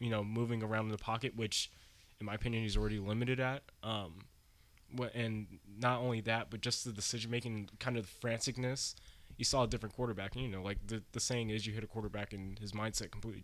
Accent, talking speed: American, 225 wpm